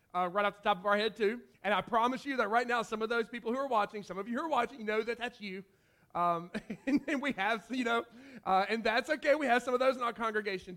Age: 40-59